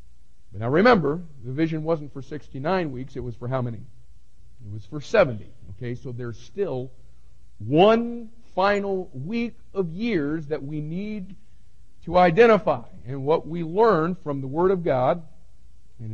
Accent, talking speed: American, 150 wpm